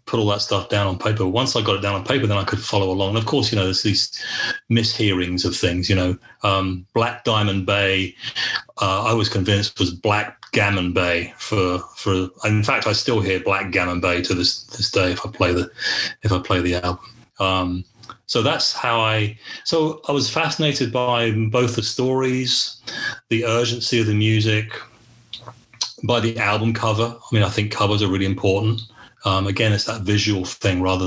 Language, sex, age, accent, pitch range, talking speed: English, male, 30-49, British, 95-115 Hz, 200 wpm